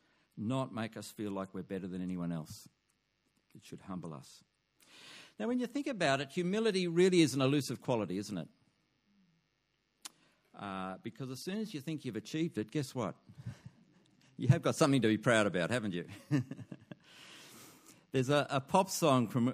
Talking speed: 170 wpm